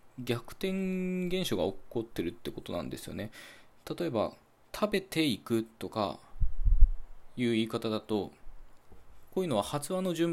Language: Japanese